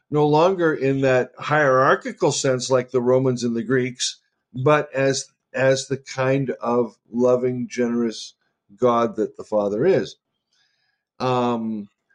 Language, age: English, 50-69